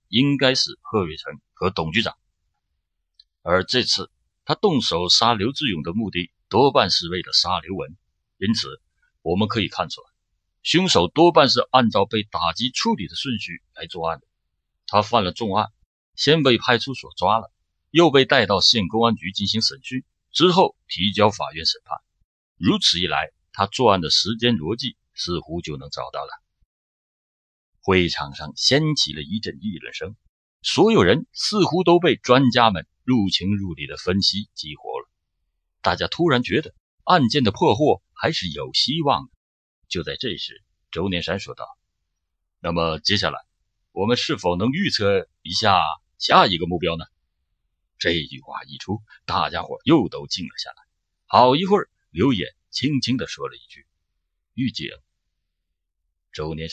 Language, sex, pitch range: Chinese, male, 80-130 Hz